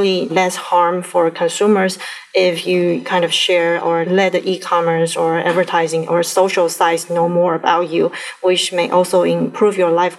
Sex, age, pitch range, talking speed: female, 30-49, 170-190 Hz, 165 wpm